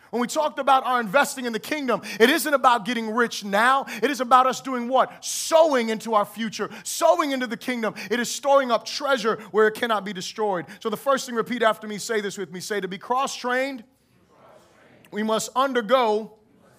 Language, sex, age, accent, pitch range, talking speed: English, male, 30-49, American, 220-280 Hz, 205 wpm